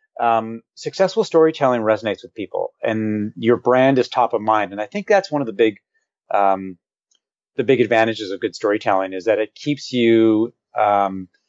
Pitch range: 110-145 Hz